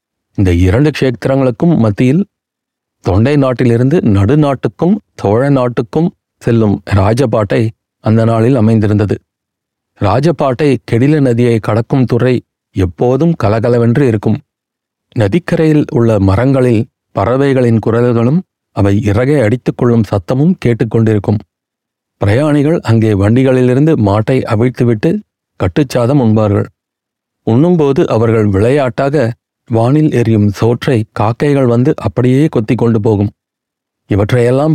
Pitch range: 110-140 Hz